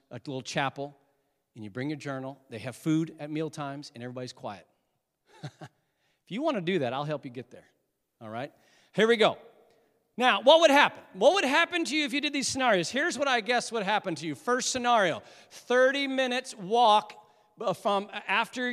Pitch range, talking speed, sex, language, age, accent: 175-245 Hz, 195 wpm, male, English, 40-59, American